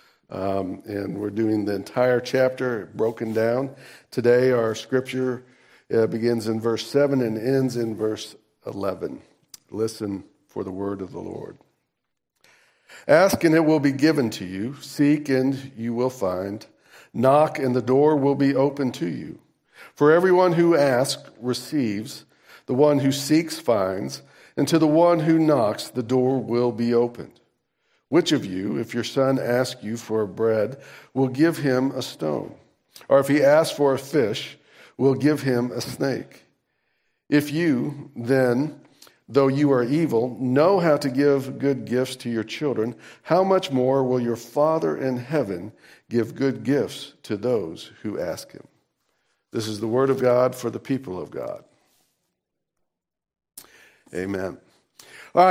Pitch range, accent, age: 115-145 Hz, American, 50-69